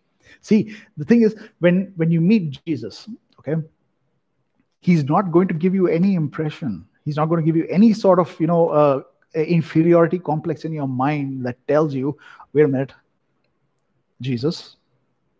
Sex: male